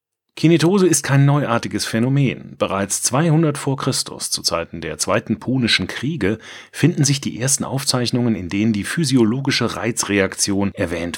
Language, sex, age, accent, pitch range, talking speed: German, male, 30-49, German, 105-140 Hz, 140 wpm